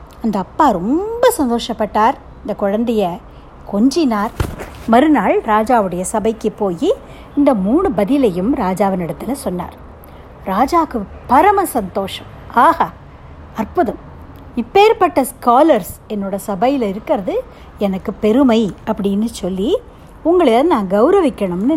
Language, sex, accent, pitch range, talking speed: Tamil, female, native, 195-270 Hz, 95 wpm